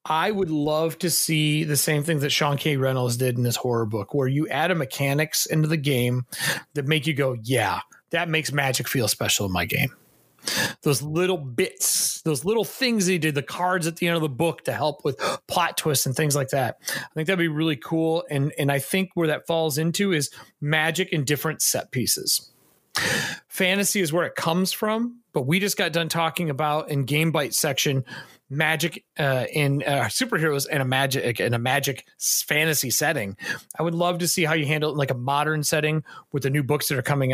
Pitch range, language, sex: 140-170 Hz, English, male